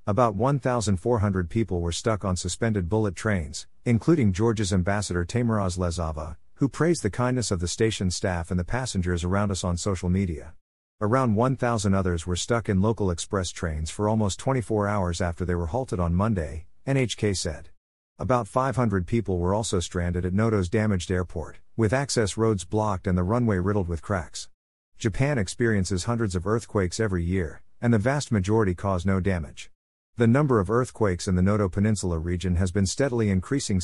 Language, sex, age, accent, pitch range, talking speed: English, male, 50-69, American, 90-115 Hz, 175 wpm